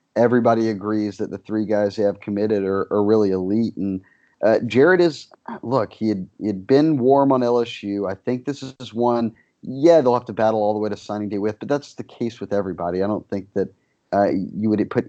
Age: 30-49